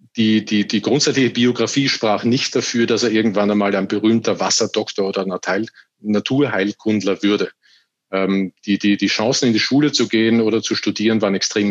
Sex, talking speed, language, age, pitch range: male, 180 wpm, German, 40-59, 105-125 Hz